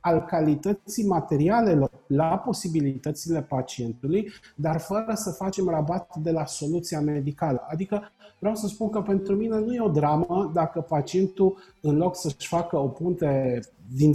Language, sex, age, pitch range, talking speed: Romanian, male, 40-59, 145-175 Hz, 150 wpm